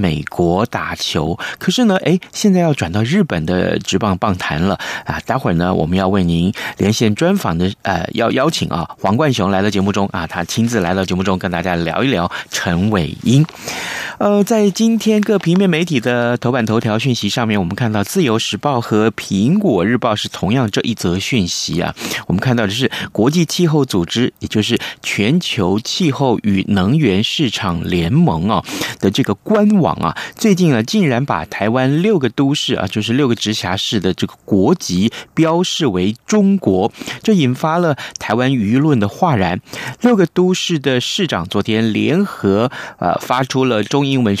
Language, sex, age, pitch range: Chinese, male, 30-49, 105-155 Hz